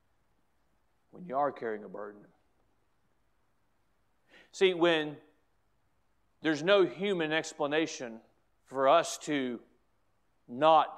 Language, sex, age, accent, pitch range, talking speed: English, male, 40-59, American, 150-200 Hz, 85 wpm